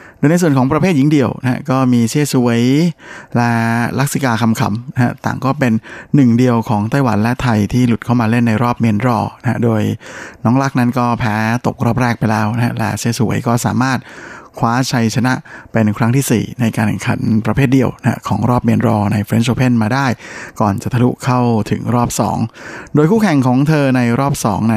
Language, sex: Thai, male